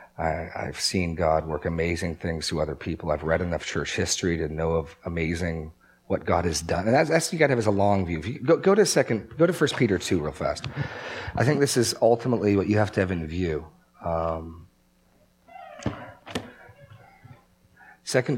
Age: 40-59